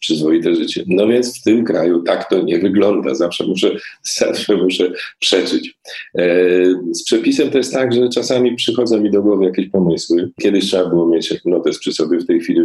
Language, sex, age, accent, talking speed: Polish, male, 40-59, native, 190 wpm